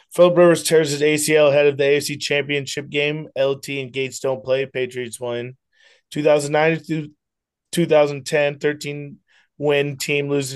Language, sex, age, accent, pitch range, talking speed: English, male, 20-39, American, 125-145 Hz, 135 wpm